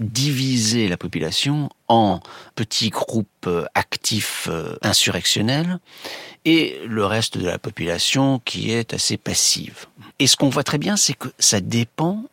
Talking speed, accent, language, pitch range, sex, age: 135 wpm, French, French, 100-140 Hz, male, 50-69